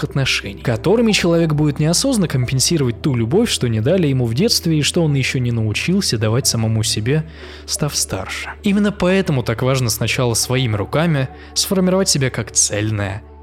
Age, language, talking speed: 20-39, Russian, 160 wpm